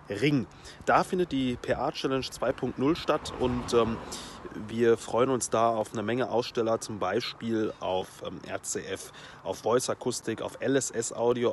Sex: male